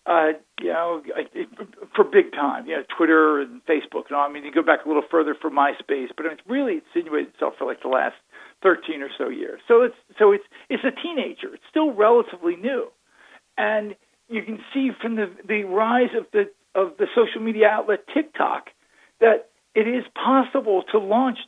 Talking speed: 195 wpm